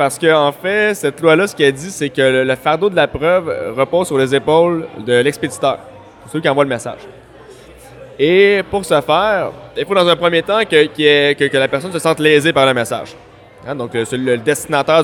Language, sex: French, male